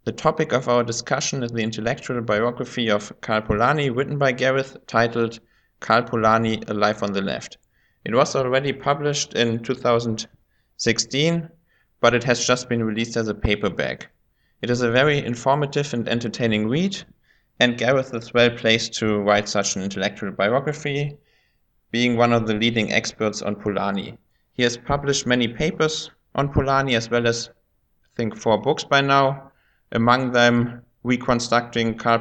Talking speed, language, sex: 155 wpm, English, male